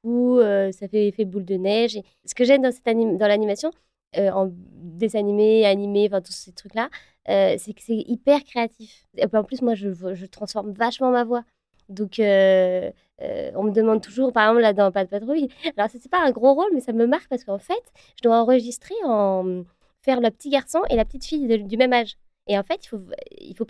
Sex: female